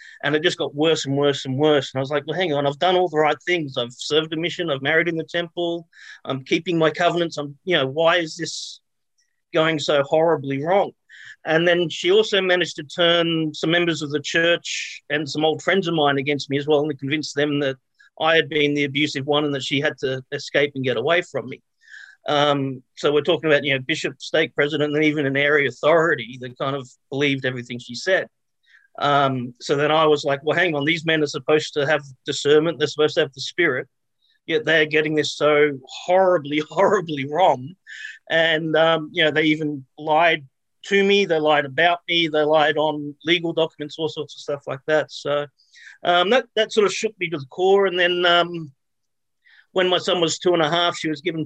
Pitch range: 145-170 Hz